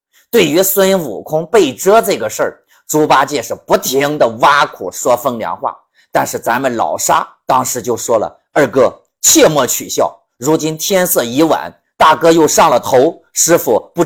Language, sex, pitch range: Chinese, male, 160-240 Hz